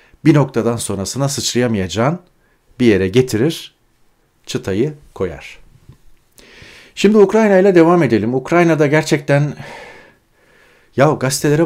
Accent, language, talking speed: native, Turkish, 95 wpm